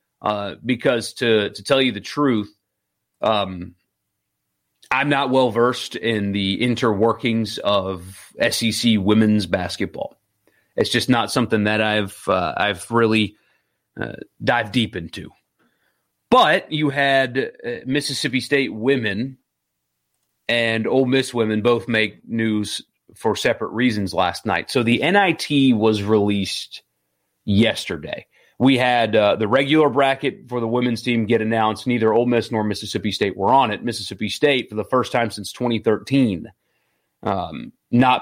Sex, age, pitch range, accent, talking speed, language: male, 30-49, 100-130 Hz, American, 140 wpm, English